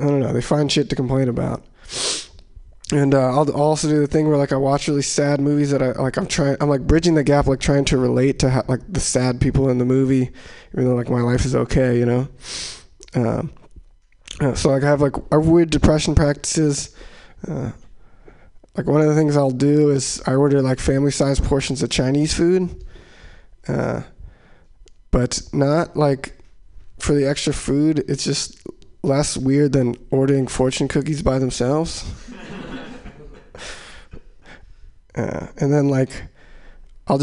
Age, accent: 20-39, American